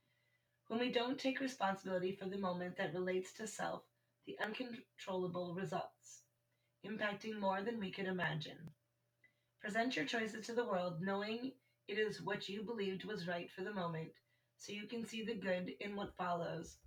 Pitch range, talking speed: 175-220 Hz, 165 wpm